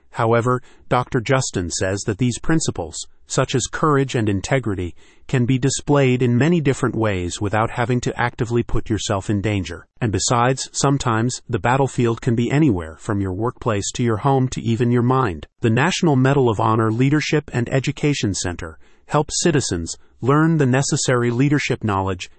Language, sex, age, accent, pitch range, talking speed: English, male, 30-49, American, 105-135 Hz, 165 wpm